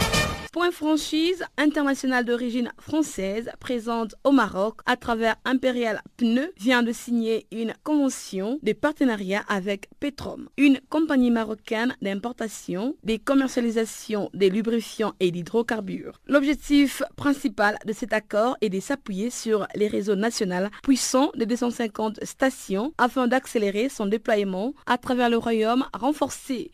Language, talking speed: French, 125 wpm